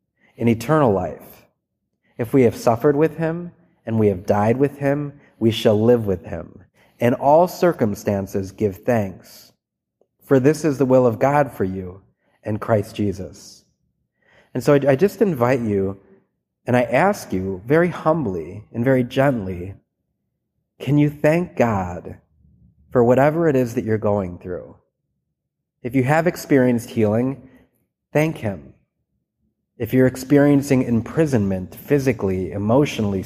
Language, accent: English, American